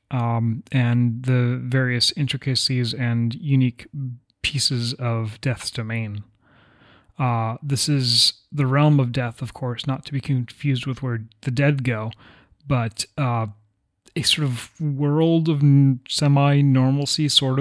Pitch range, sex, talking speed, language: 120-140 Hz, male, 130 wpm, English